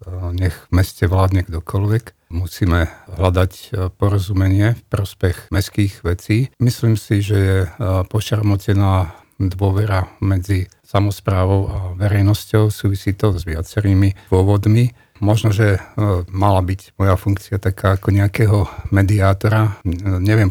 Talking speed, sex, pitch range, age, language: 115 wpm, male, 95-110 Hz, 50-69, Slovak